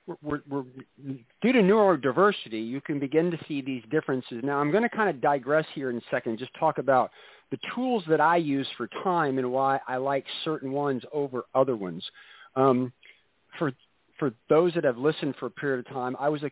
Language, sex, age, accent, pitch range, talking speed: English, male, 50-69, American, 125-170 Hz, 210 wpm